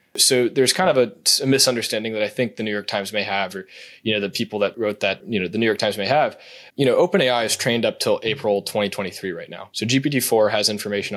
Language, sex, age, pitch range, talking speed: English, male, 20-39, 105-125 Hz, 255 wpm